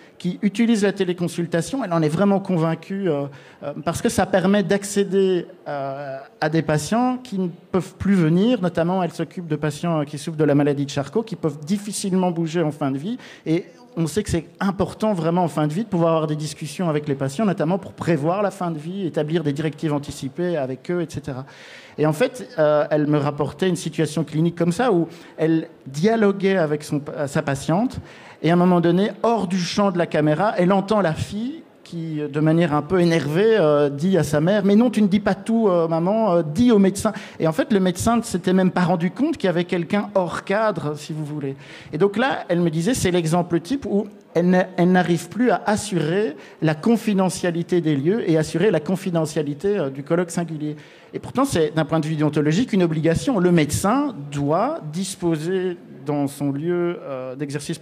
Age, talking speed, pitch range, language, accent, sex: 50-69, 210 wpm, 155-195 Hz, French, French, male